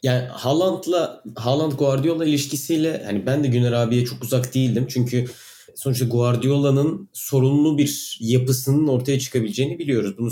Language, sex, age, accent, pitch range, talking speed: Turkish, male, 30-49, native, 115-140 Hz, 120 wpm